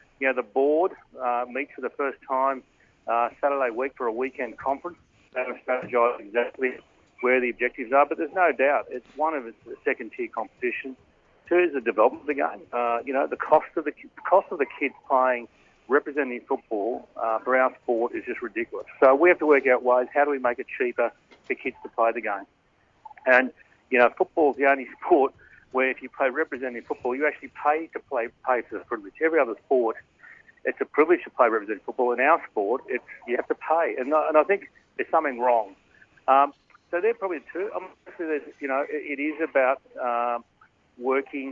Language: English